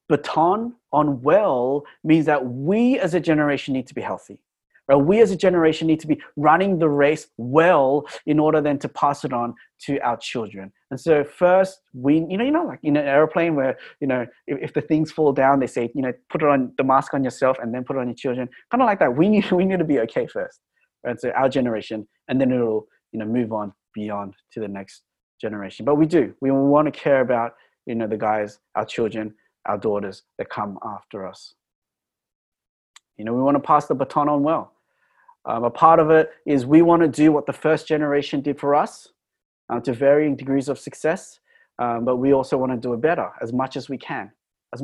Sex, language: male, English